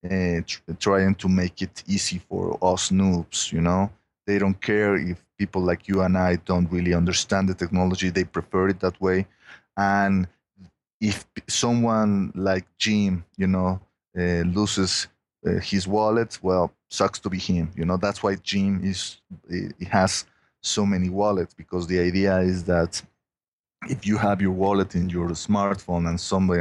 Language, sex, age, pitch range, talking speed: English, male, 30-49, 90-100 Hz, 165 wpm